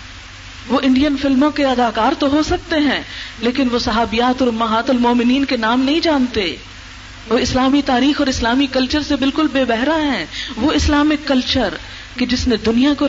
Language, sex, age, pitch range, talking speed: Urdu, female, 40-59, 230-285 Hz, 160 wpm